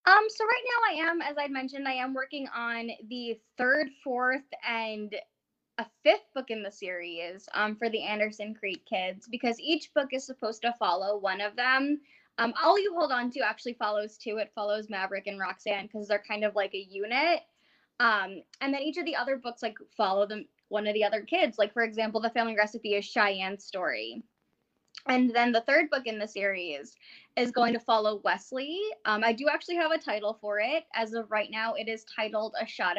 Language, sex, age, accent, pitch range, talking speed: English, female, 10-29, American, 210-275 Hz, 210 wpm